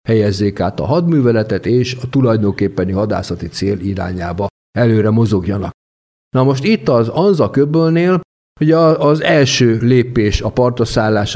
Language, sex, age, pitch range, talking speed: Hungarian, male, 50-69, 100-130 Hz, 130 wpm